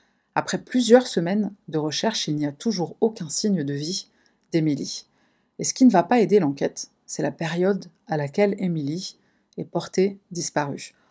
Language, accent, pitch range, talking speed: French, French, 155-205 Hz, 165 wpm